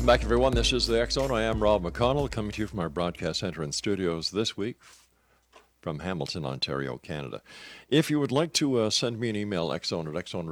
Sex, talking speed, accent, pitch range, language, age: male, 210 wpm, American, 80-110 Hz, English, 50-69